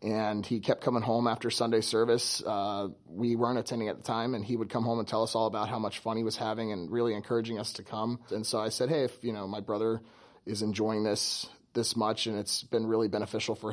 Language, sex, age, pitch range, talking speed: English, male, 30-49, 105-120 Hz, 255 wpm